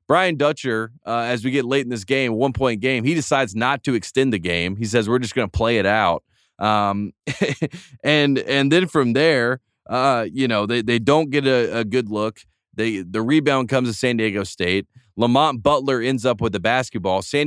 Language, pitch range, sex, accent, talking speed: English, 115-140 Hz, male, American, 210 wpm